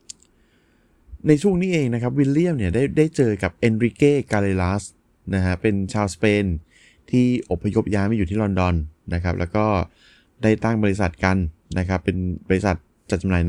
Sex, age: male, 20-39